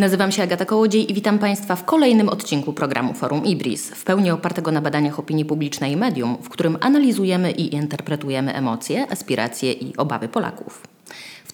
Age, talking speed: 20-39, 170 wpm